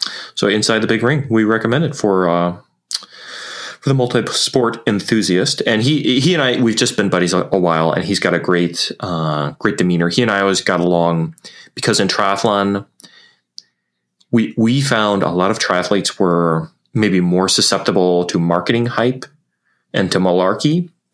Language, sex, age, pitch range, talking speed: English, male, 30-49, 85-110 Hz, 175 wpm